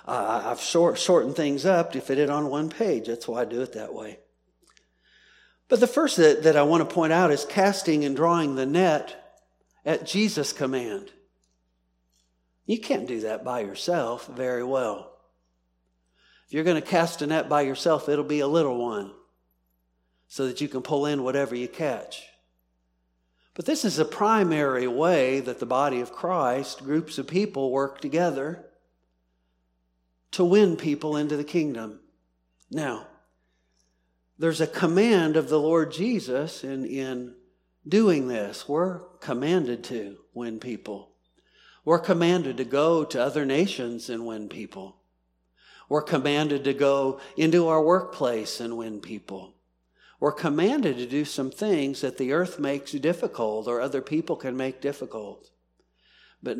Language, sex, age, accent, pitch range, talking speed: English, male, 50-69, American, 110-165 Hz, 155 wpm